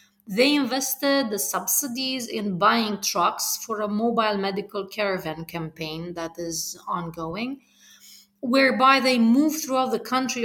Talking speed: 125 wpm